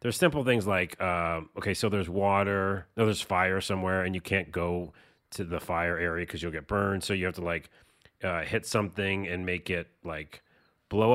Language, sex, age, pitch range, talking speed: English, male, 30-49, 85-105 Hz, 205 wpm